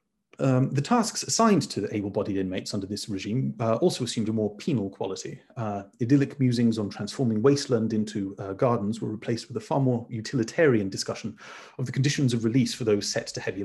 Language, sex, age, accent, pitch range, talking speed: English, male, 30-49, British, 105-135 Hz, 200 wpm